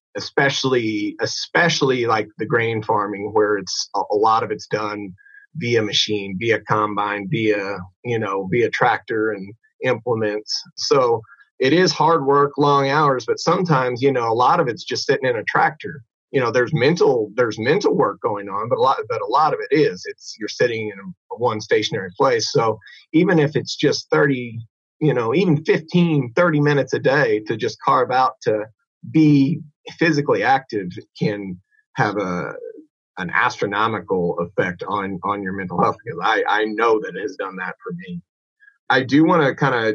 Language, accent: English, American